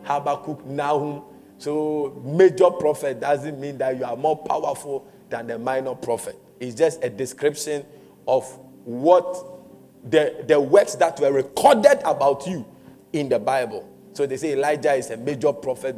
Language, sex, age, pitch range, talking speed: English, male, 50-69, 140-235 Hz, 155 wpm